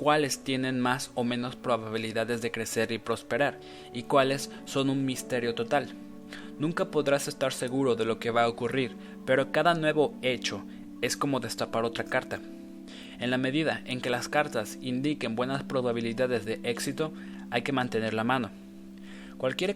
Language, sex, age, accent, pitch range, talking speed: Spanish, male, 20-39, Mexican, 115-150 Hz, 160 wpm